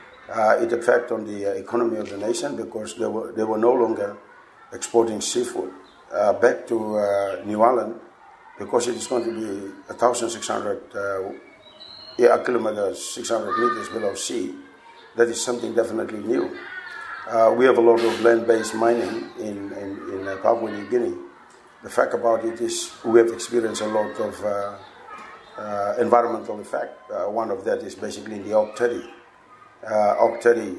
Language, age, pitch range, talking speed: English, 50-69, 105-120 Hz, 175 wpm